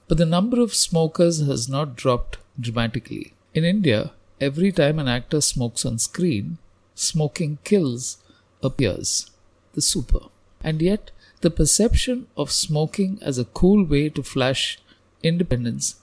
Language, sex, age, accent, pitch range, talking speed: English, male, 50-69, Indian, 120-160 Hz, 135 wpm